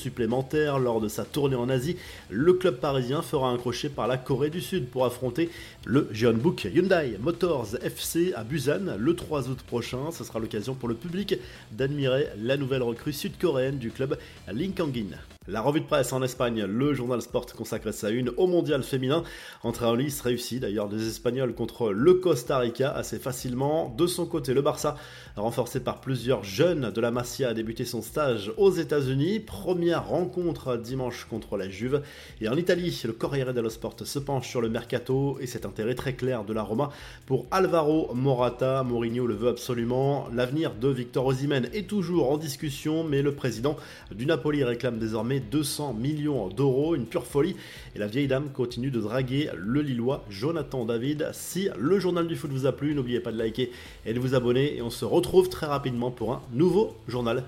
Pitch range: 120-150 Hz